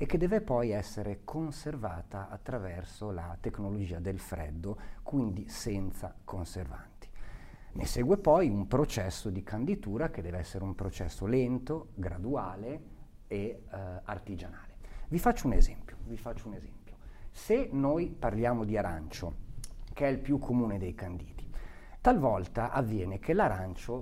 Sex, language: male, Italian